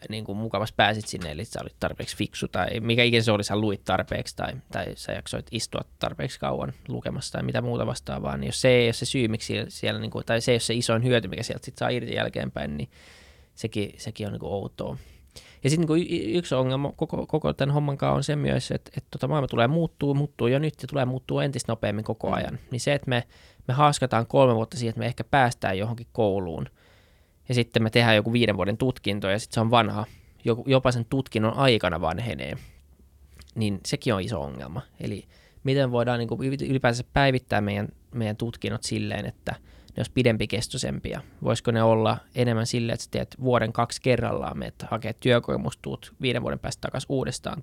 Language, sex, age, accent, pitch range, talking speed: Finnish, male, 20-39, native, 105-125 Hz, 185 wpm